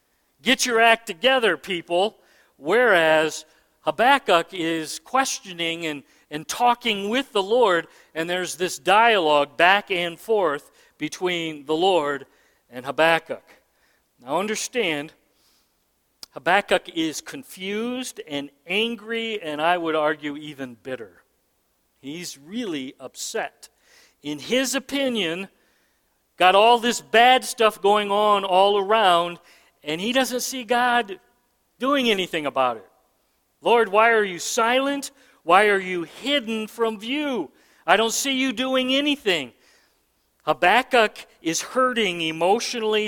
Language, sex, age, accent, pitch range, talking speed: English, male, 50-69, American, 170-245 Hz, 120 wpm